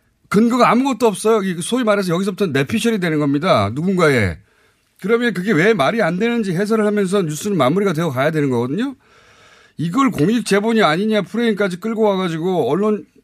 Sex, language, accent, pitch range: male, Korean, native, 150-220 Hz